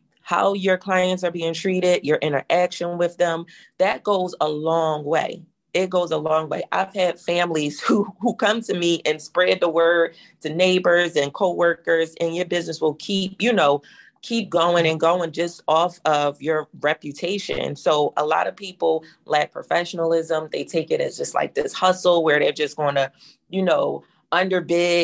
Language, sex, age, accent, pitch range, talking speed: English, female, 30-49, American, 155-180 Hz, 180 wpm